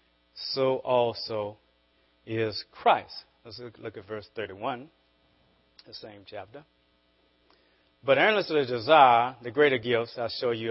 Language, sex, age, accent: English, male, 30-49, American